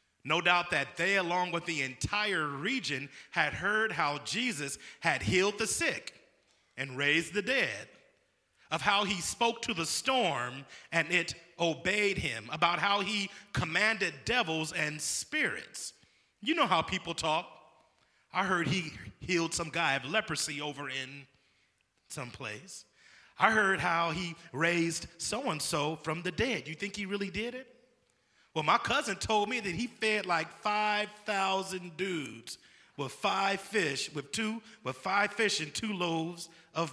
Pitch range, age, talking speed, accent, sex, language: 145-200 Hz, 30-49, 155 wpm, American, male, English